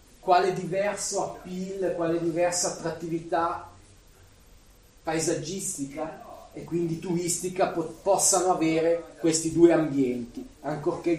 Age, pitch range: 30-49, 140-170 Hz